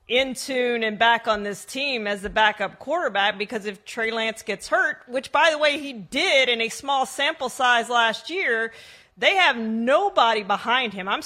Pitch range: 215-255 Hz